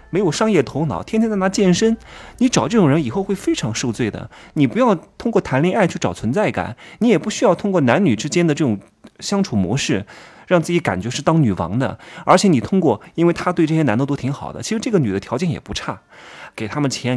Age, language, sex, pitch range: 20-39, Chinese, male, 105-165 Hz